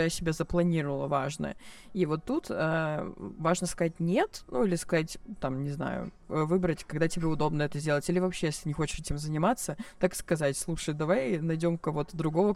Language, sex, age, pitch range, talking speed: Russian, female, 20-39, 160-190 Hz, 170 wpm